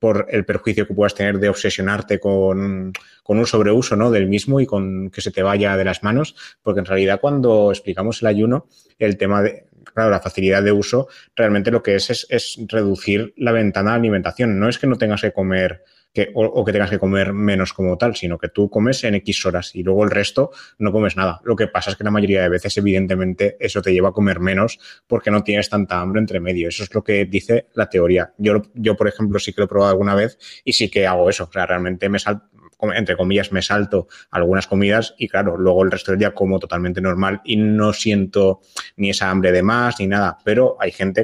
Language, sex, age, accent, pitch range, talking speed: Spanish, male, 20-39, Spanish, 95-110 Hz, 235 wpm